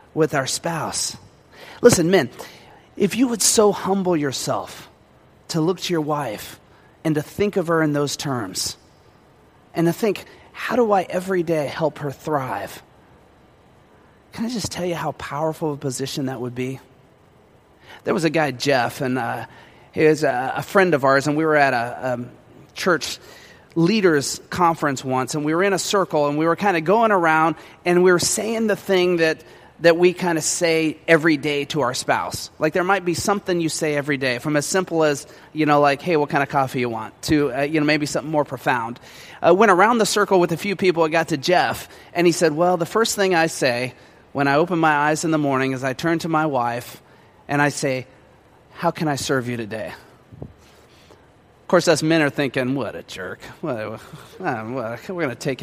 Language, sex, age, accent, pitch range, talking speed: English, male, 30-49, American, 135-175 Hz, 205 wpm